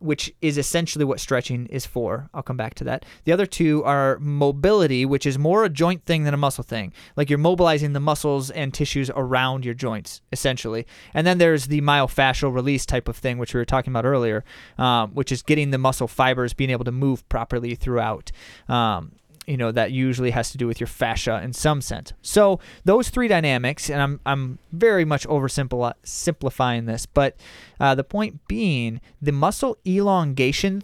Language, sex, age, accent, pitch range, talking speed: English, male, 20-39, American, 130-160 Hz, 195 wpm